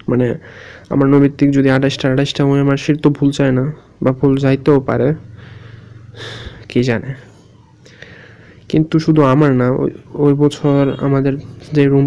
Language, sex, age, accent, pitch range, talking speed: Bengali, male, 20-39, native, 130-145 Hz, 90 wpm